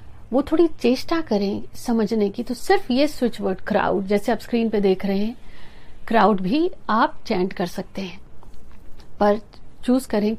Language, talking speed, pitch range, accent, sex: Hindi, 160 wpm, 205-250 Hz, native, female